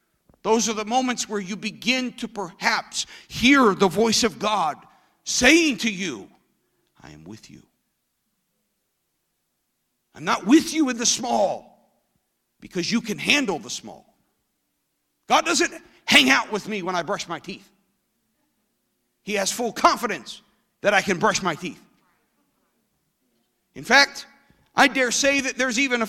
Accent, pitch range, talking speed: American, 225-300 Hz, 145 wpm